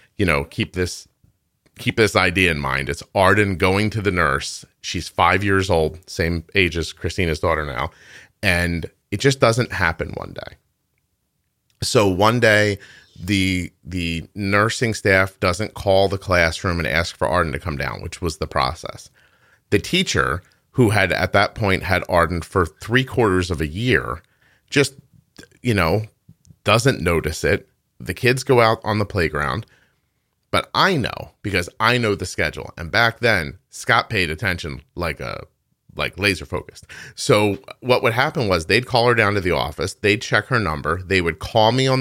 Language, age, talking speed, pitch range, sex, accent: English, 30-49, 175 wpm, 85-105 Hz, male, American